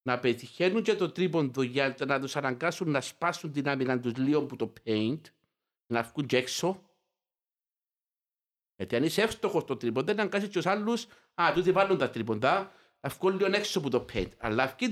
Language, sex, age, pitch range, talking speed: Greek, male, 60-79, 130-190 Hz, 150 wpm